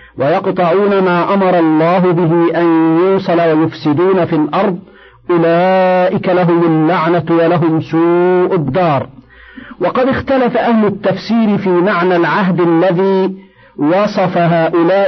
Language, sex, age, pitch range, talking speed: Arabic, male, 50-69, 160-195 Hz, 105 wpm